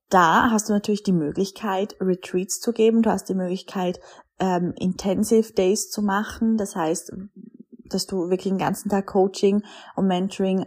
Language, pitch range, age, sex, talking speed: German, 180-200 Hz, 20-39, female, 165 wpm